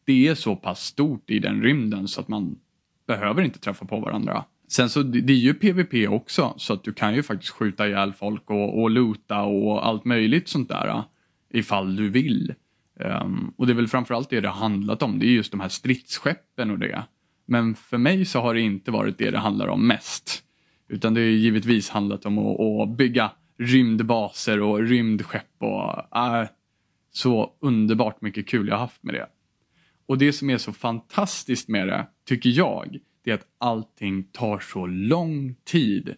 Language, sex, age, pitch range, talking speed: Swedish, male, 20-39, 105-130 Hz, 190 wpm